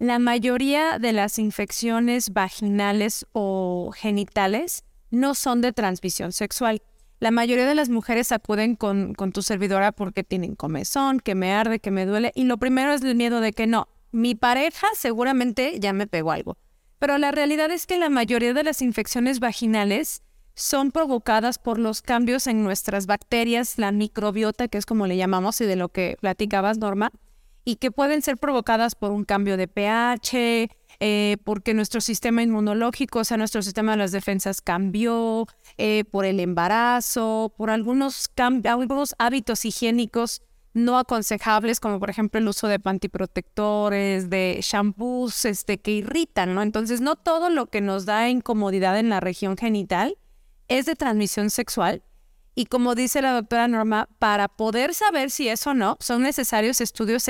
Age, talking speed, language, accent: 30-49, 170 wpm, Spanish, Mexican